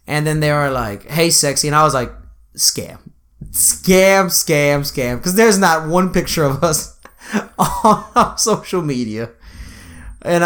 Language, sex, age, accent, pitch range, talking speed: English, male, 20-39, American, 115-165 Hz, 155 wpm